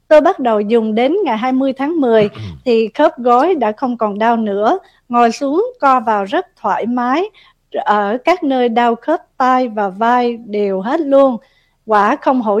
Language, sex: Vietnamese, female